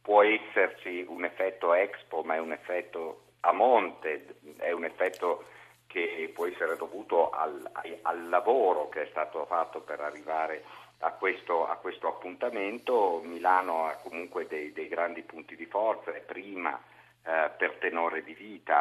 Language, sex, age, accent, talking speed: Italian, male, 50-69, native, 150 wpm